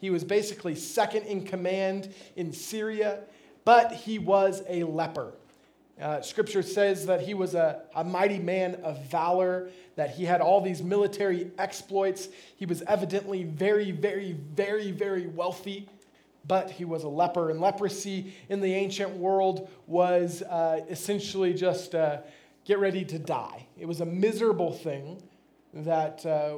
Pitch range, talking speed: 165-195 Hz, 150 wpm